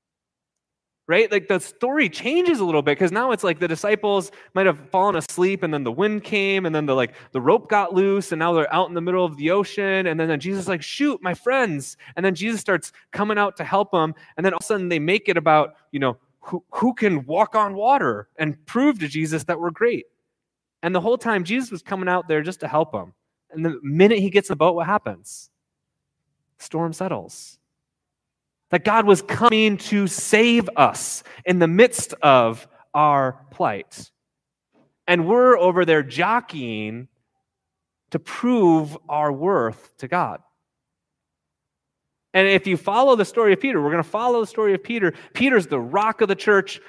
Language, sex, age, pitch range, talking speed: English, male, 20-39, 155-205 Hz, 195 wpm